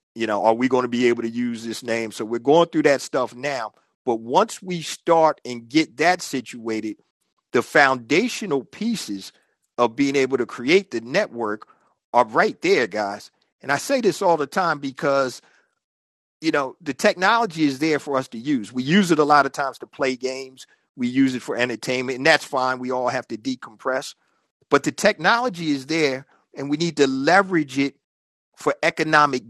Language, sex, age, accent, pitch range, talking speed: English, male, 50-69, American, 130-195 Hz, 195 wpm